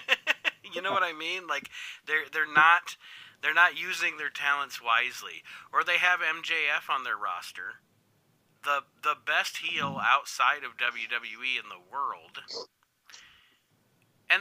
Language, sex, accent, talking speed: English, male, American, 135 wpm